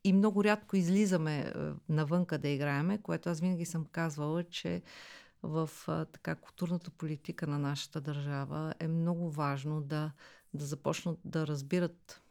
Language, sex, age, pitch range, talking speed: Bulgarian, female, 50-69, 155-185 Hz, 145 wpm